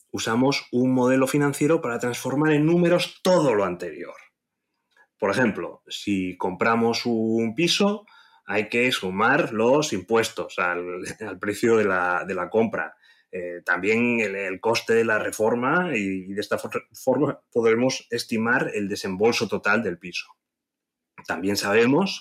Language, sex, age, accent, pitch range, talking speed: Spanish, male, 30-49, Spanish, 100-150 Hz, 140 wpm